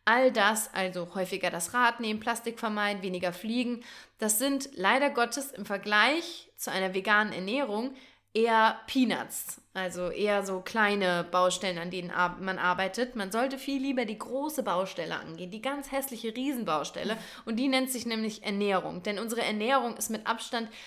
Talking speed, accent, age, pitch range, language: 160 wpm, German, 20-39, 195-240 Hz, German